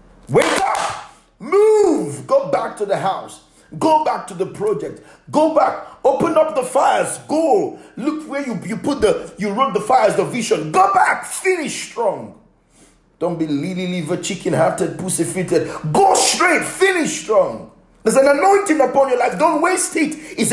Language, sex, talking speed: English, male, 170 wpm